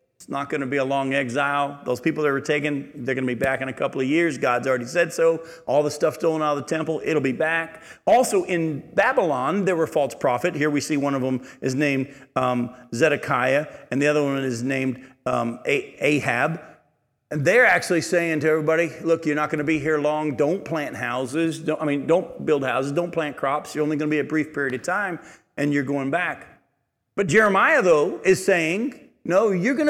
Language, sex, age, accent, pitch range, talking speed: English, male, 40-59, American, 140-230 Hz, 220 wpm